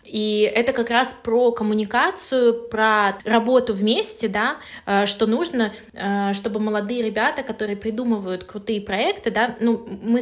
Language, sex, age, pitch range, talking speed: Russian, female, 20-39, 205-235 Hz, 130 wpm